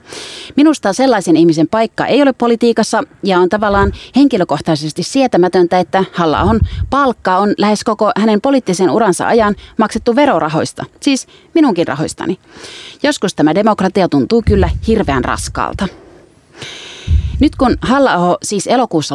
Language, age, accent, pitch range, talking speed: Finnish, 30-49, native, 175-235 Hz, 125 wpm